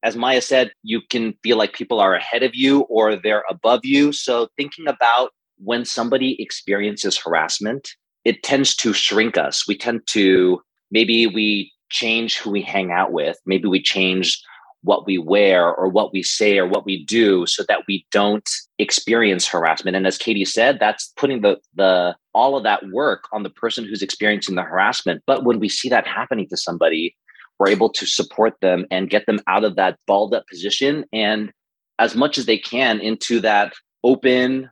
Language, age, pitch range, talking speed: English, 30-49, 100-125 Hz, 190 wpm